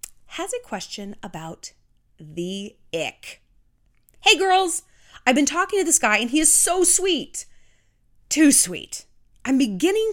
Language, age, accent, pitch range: English, 30-49, American, 190-310 Hz